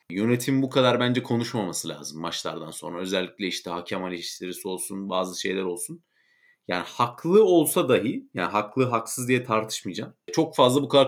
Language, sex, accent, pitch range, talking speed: Turkish, male, native, 105-150 Hz, 155 wpm